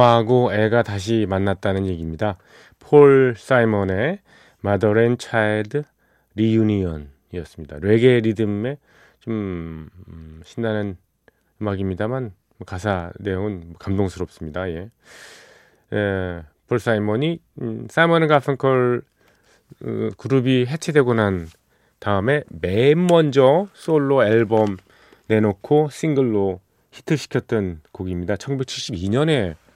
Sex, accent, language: male, native, Korean